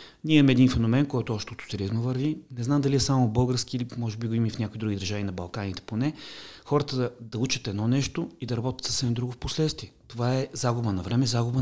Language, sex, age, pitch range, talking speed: Bulgarian, male, 30-49, 105-130 Hz, 230 wpm